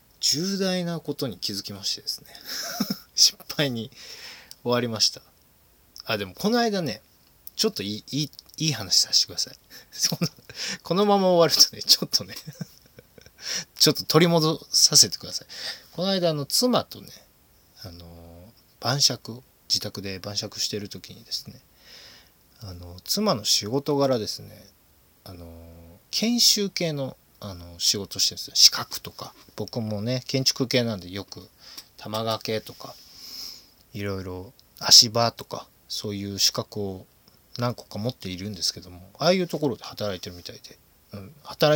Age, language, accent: 20-39, Japanese, native